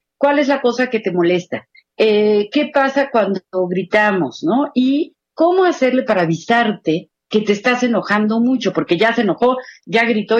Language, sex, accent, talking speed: Spanish, female, Mexican, 165 wpm